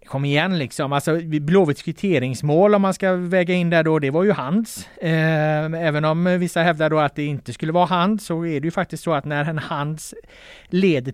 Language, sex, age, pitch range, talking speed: Swedish, male, 30-49, 130-175 Hz, 210 wpm